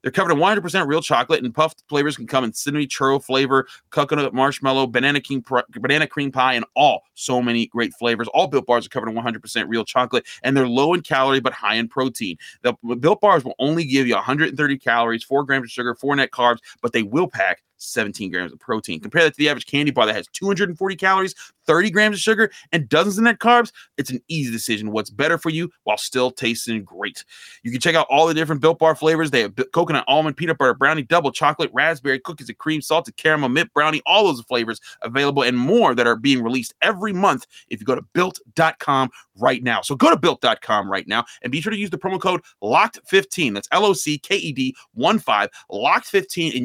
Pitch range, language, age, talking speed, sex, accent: 125-170 Hz, English, 30-49, 215 wpm, male, American